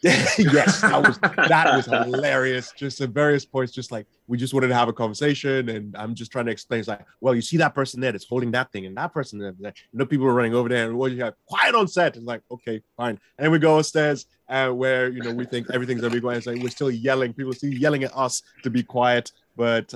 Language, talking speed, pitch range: English, 270 wpm, 110-135 Hz